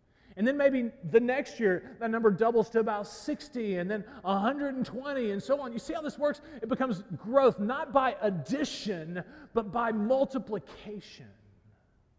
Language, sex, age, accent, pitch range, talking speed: English, male, 40-59, American, 165-260 Hz, 160 wpm